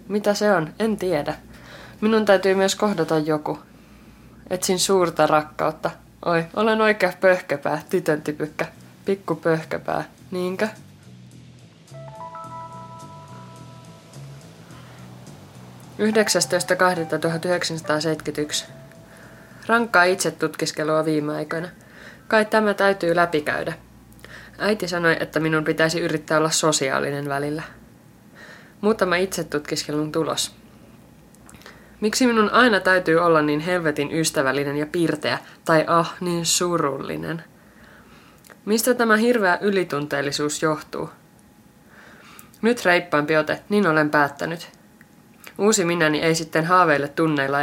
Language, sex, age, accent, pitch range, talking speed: Finnish, female, 20-39, native, 150-190 Hz, 95 wpm